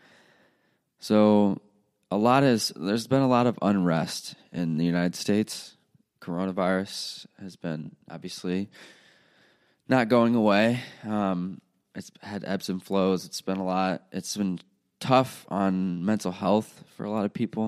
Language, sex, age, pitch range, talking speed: English, male, 20-39, 90-105 Hz, 145 wpm